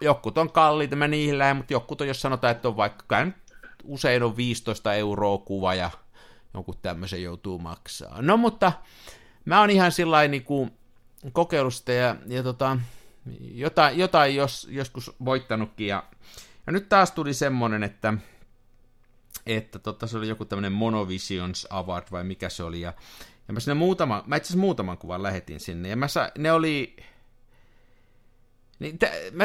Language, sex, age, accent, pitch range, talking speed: Finnish, male, 50-69, native, 100-135 Hz, 155 wpm